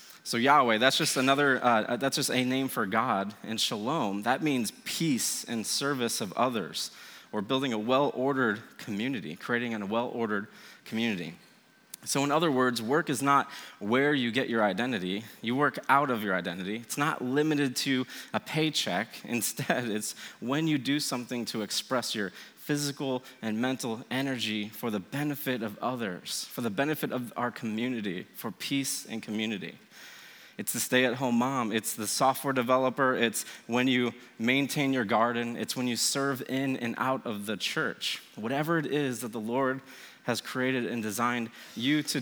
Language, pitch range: English, 115-145 Hz